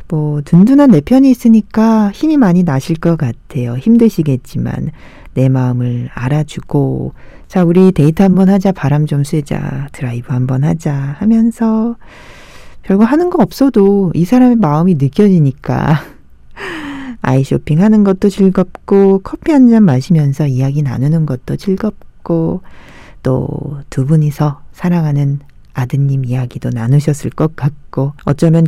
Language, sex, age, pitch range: Korean, female, 40-59, 135-210 Hz